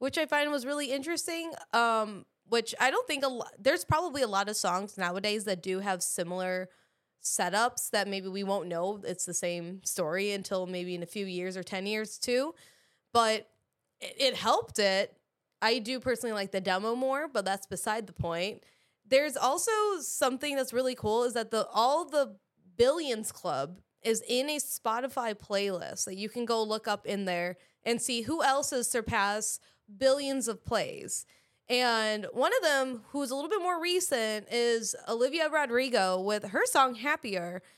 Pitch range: 205-265 Hz